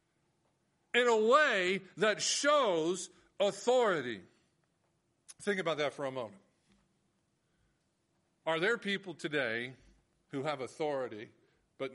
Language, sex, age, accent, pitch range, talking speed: English, male, 50-69, American, 160-225 Hz, 100 wpm